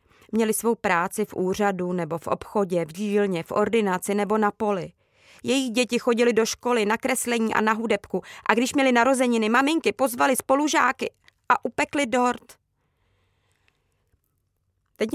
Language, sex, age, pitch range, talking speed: Czech, female, 20-39, 150-210 Hz, 145 wpm